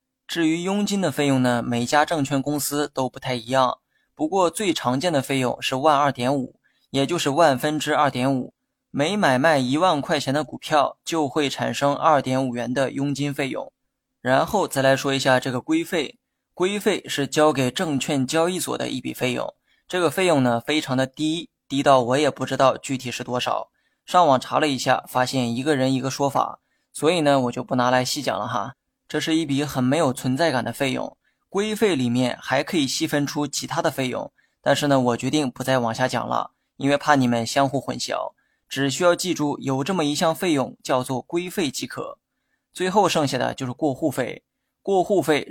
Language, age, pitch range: Chinese, 20-39, 130-160 Hz